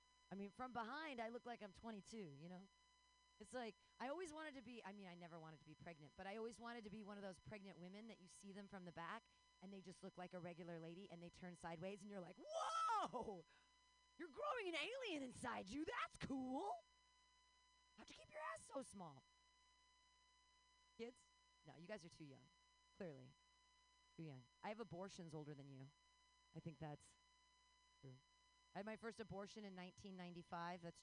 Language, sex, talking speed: English, female, 200 wpm